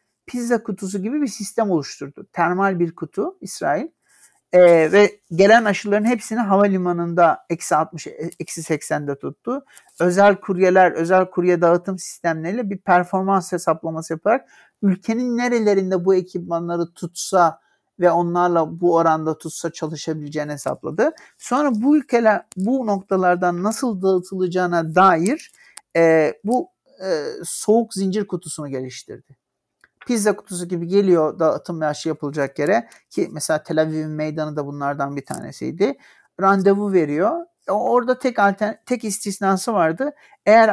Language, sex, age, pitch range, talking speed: Turkish, male, 60-79, 165-210 Hz, 120 wpm